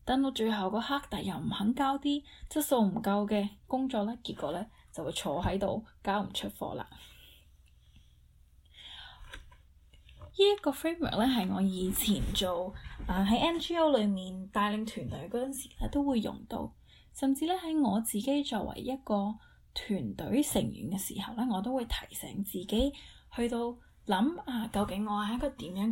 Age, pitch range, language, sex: 10-29, 200-270 Hz, Chinese, female